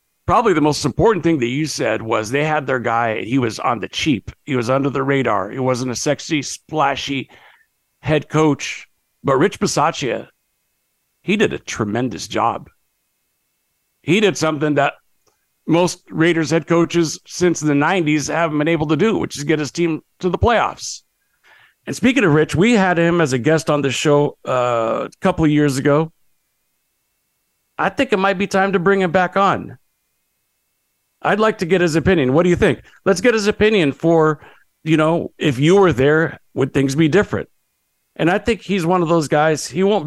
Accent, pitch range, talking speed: American, 140-170 Hz, 190 wpm